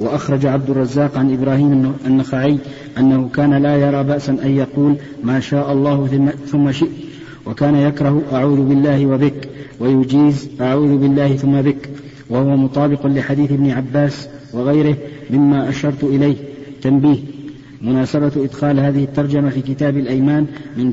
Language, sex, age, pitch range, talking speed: Arabic, male, 50-69, 135-145 Hz, 130 wpm